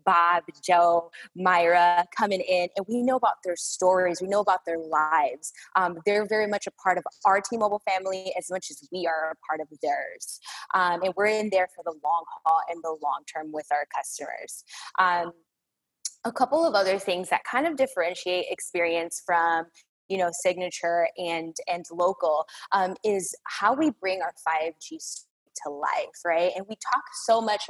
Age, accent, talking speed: 20-39, American, 180 wpm